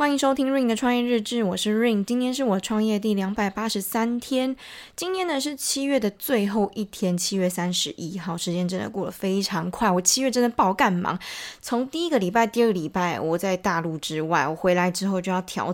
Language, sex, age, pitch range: Chinese, female, 20-39, 175-215 Hz